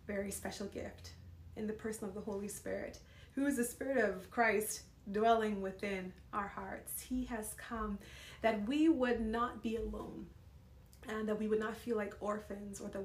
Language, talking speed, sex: English, 180 wpm, female